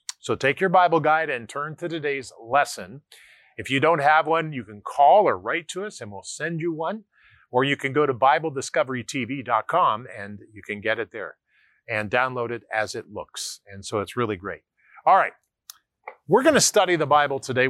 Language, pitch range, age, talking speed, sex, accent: English, 125-170 Hz, 40-59, 200 wpm, male, American